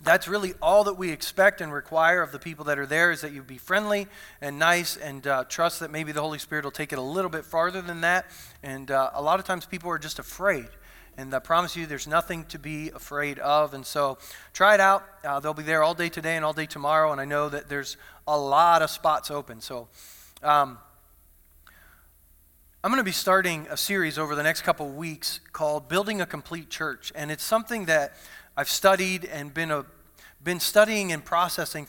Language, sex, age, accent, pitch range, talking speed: English, male, 30-49, American, 145-185 Hz, 220 wpm